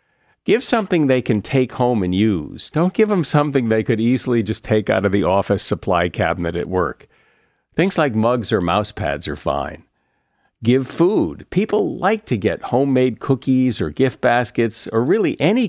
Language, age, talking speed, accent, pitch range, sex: English, 50-69, 180 wpm, American, 90-130 Hz, male